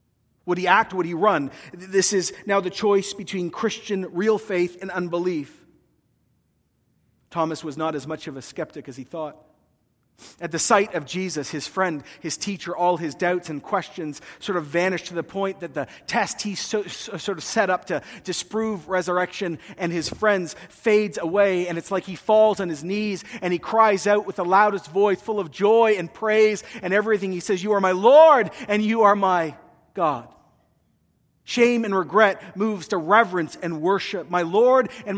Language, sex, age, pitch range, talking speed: English, male, 40-59, 165-205 Hz, 185 wpm